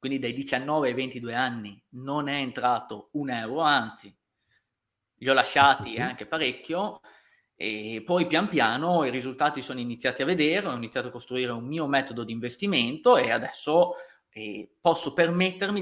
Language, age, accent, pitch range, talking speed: Italian, 20-39, native, 120-170 Hz, 150 wpm